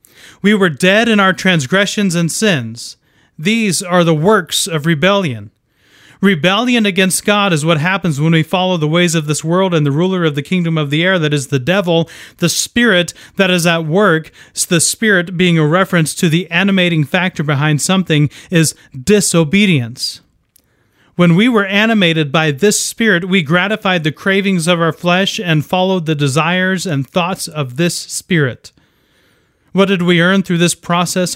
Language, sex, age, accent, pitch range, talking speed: English, male, 30-49, American, 155-195 Hz, 170 wpm